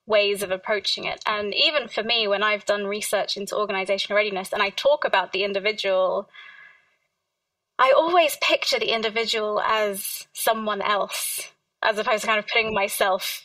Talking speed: 160 wpm